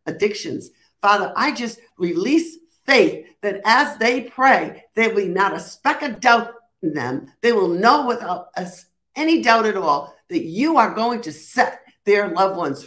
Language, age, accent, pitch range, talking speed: English, 60-79, American, 185-275 Hz, 175 wpm